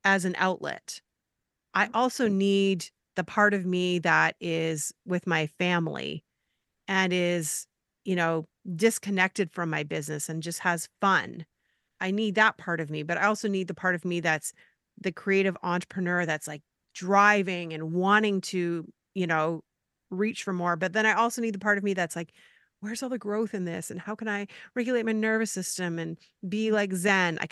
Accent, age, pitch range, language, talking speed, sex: American, 30-49, 170-205 Hz, English, 185 wpm, female